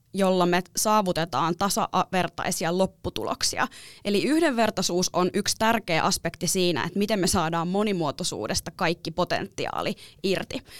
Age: 20-39